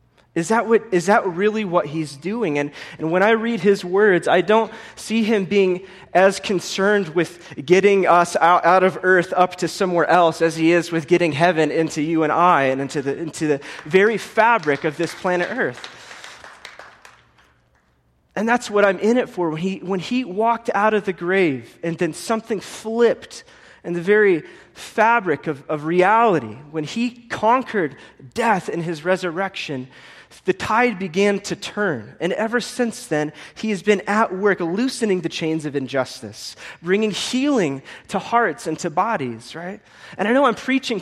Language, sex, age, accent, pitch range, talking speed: English, male, 20-39, American, 165-220 Hz, 175 wpm